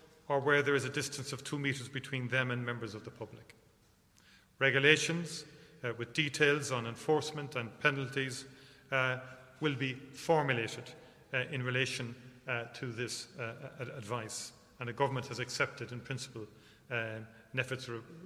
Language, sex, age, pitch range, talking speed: English, male, 40-59, 120-145 Hz, 145 wpm